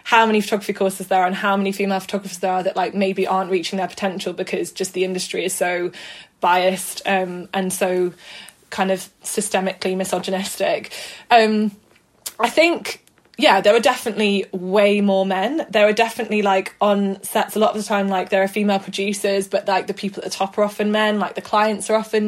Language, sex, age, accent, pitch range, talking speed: English, female, 20-39, British, 190-215 Hz, 200 wpm